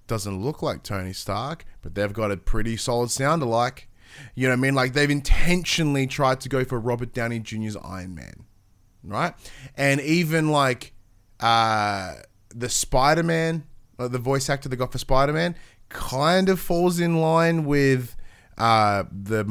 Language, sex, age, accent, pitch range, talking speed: English, male, 20-39, Australian, 110-145 Hz, 165 wpm